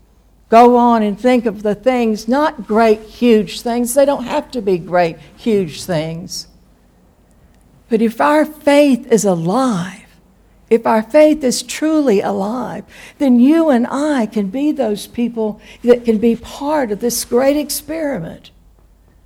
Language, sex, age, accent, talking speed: English, female, 60-79, American, 145 wpm